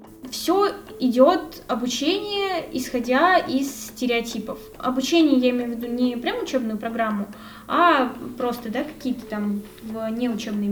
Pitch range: 225-280 Hz